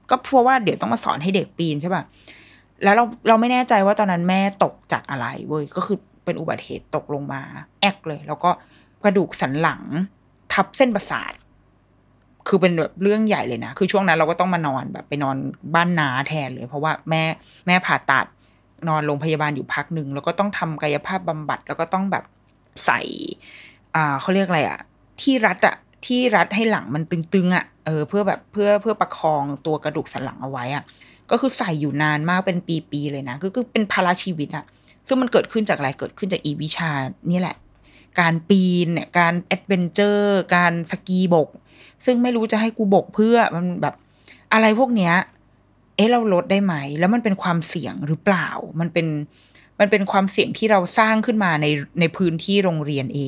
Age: 20-39